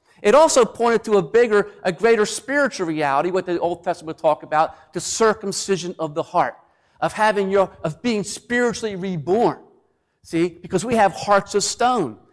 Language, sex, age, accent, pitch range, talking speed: English, male, 50-69, American, 165-220 Hz, 165 wpm